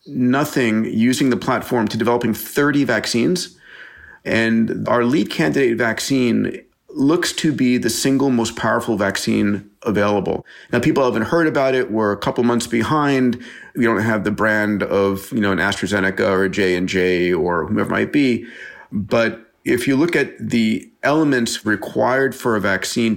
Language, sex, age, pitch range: English, male, 40-59, 105-125 Hz